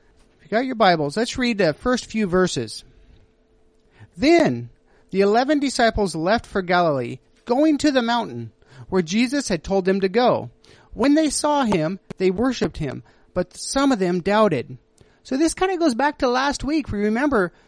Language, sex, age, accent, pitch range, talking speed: English, male, 40-59, American, 185-255 Hz, 170 wpm